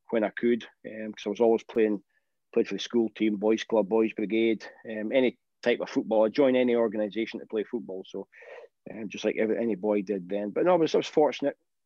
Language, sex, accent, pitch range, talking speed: English, male, British, 110-125 Hz, 225 wpm